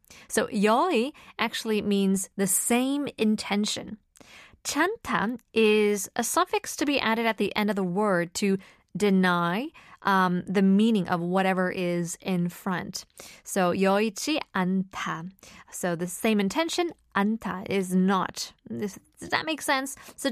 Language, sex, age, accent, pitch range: Korean, female, 20-39, American, 185-230 Hz